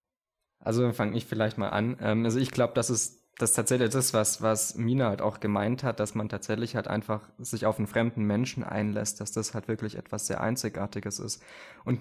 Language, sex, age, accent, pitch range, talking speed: German, male, 20-39, German, 105-115 Hz, 205 wpm